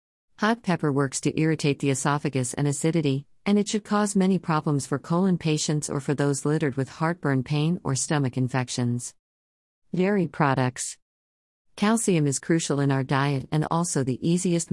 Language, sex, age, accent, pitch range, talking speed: English, female, 50-69, American, 130-155 Hz, 165 wpm